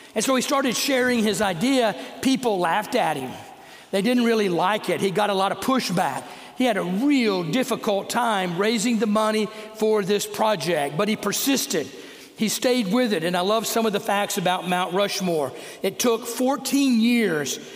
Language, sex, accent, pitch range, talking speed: English, male, American, 195-245 Hz, 185 wpm